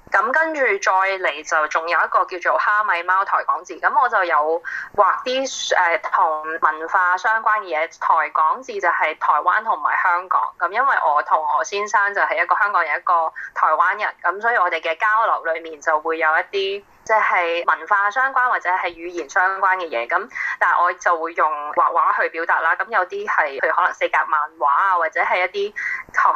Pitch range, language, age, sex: 170-265 Hz, Chinese, 20-39, female